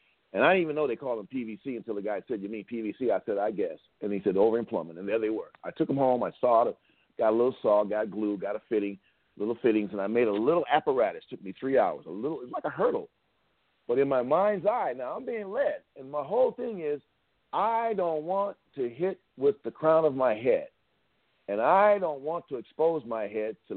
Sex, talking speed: male, 245 wpm